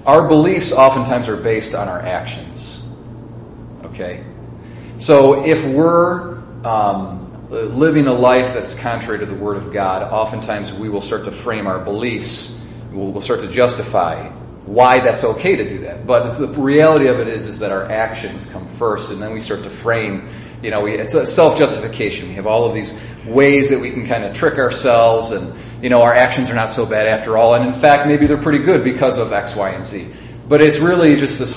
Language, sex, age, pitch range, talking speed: English, male, 30-49, 110-145 Hz, 205 wpm